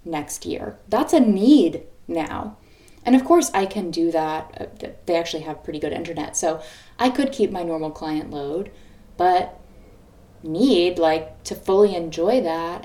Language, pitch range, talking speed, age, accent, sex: English, 165-250 Hz, 160 wpm, 20-39, American, female